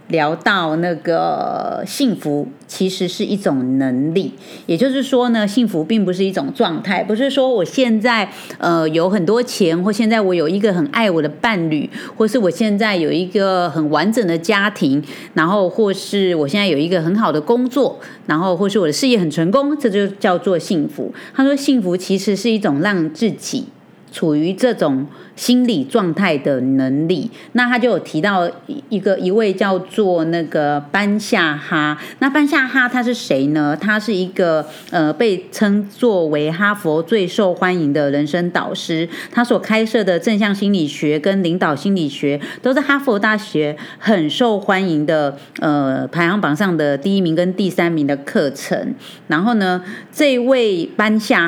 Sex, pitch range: female, 165-230 Hz